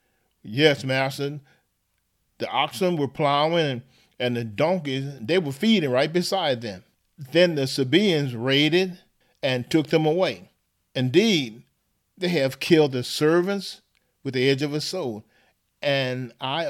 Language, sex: English, male